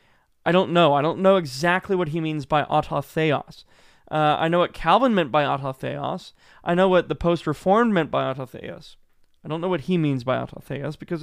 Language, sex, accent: English, male, American